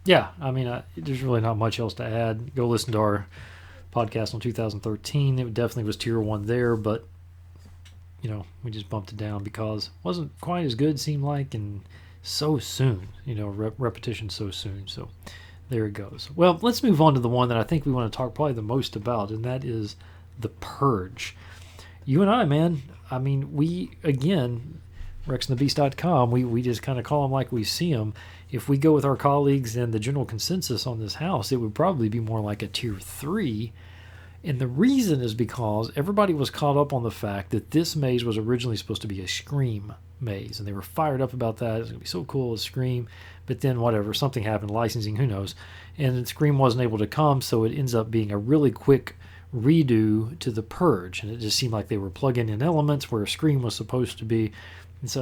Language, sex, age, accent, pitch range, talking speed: English, male, 40-59, American, 100-135 Hz, 215 wpm